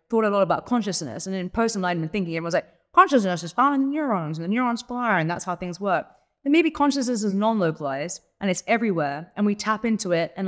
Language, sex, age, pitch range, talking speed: English, female, 30-49, 165-230 Hz, 230 wpm